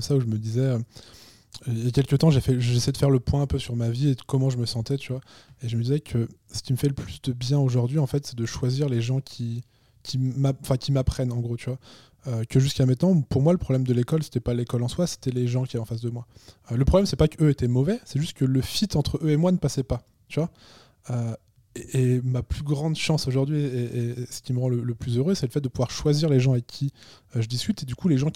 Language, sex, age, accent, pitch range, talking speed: French, male, 20-39, French, 120-140 Hz, 305 wpm